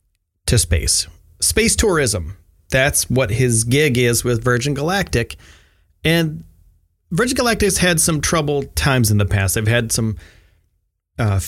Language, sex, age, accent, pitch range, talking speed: English, male, 30-49, American, 90-135 Hz, 135 wpm